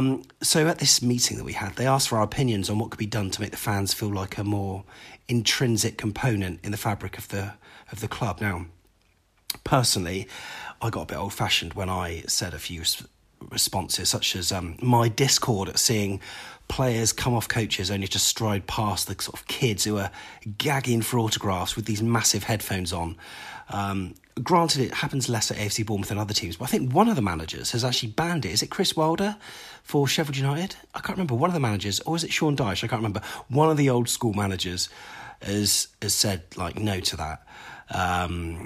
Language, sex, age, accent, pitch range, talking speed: English, male, 30-49, British, 100-125 Hz, 215 wpm